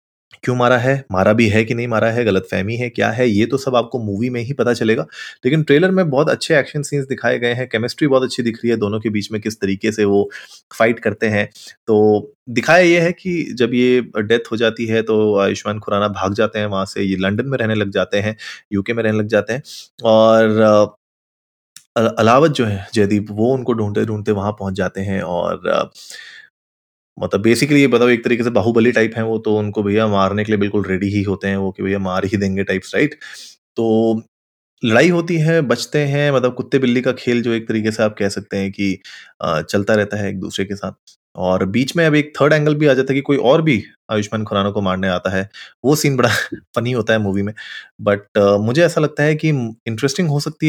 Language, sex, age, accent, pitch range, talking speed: Hindi, male, 30-49, native, 105-130 Hz, 225 wpm